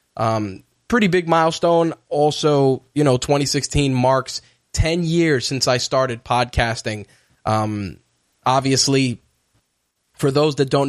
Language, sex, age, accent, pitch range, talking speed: English, male, 10-29, American, 120-135 Hz, 115 wpm